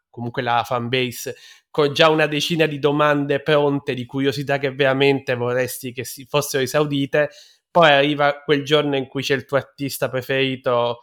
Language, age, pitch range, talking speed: Italian, 20-39, 125-140 Hz, 170 wpm